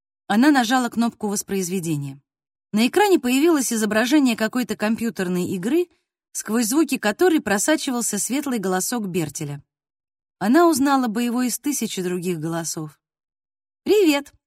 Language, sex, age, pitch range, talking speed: Russian, female, 20-39, 185-270 Hz, 110 wpm